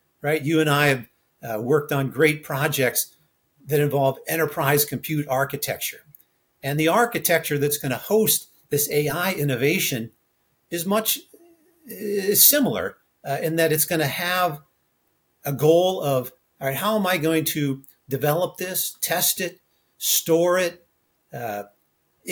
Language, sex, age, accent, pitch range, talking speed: English, male, 50-69, American, 135-165 Hz, 145 wpm